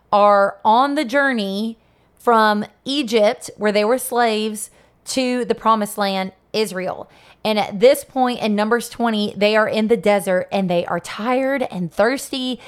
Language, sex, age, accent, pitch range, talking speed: English, female, 20-39, American, 195-245 Hz, 155 wpm